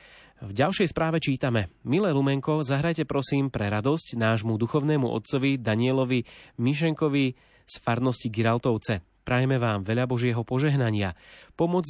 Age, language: 30-49, Slovak